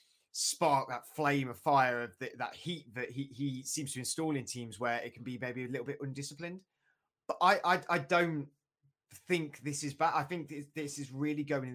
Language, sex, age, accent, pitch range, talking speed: English, male, 20-39, British, 120-145 Hz, 215 wpm